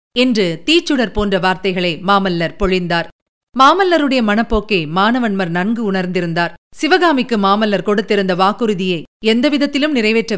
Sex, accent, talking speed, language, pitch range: female, native, 95 wpm, Tamil, 190-255 Hz